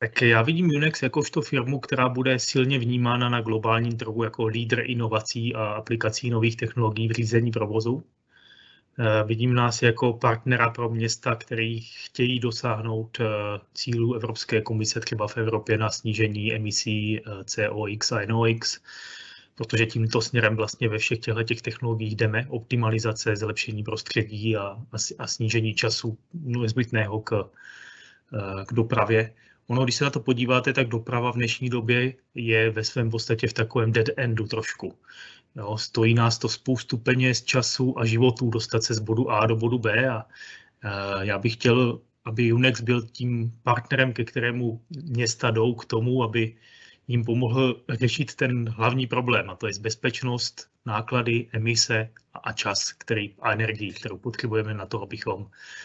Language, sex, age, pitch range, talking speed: Czech, male, 30-49, 110-125 Hz, 150 wpm